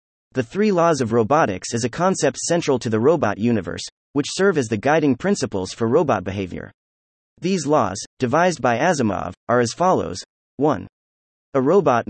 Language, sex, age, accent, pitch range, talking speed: English, male, 30-49, American, 110-160 Hz, 165 wpm